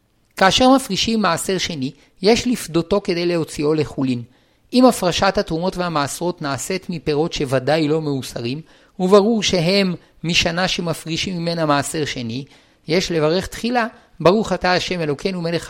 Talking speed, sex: 125 wpm, male